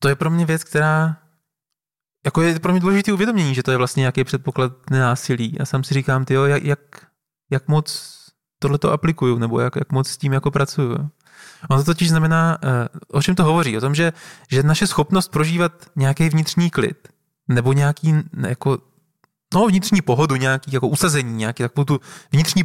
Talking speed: 180 wpm